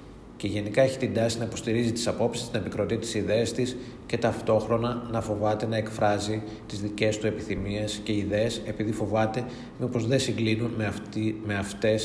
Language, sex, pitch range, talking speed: Greek, male, 105-120 Hz, 175 wpm